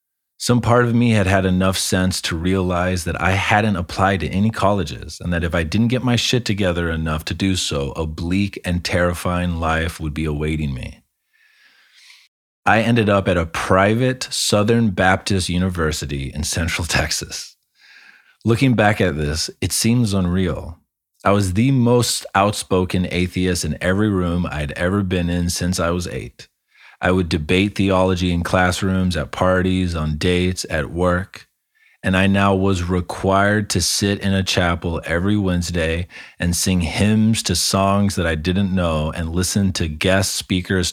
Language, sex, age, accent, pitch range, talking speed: English, male, 30-49, American, 85-100 Hz, 165 wpm